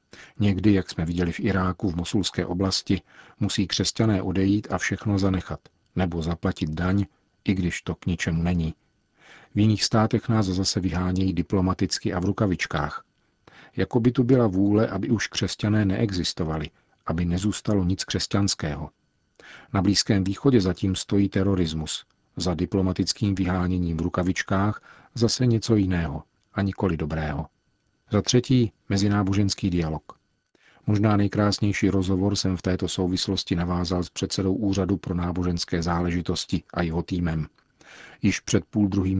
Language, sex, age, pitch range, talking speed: Czech, male, 50-69, 90-105 Hz, 135 wpm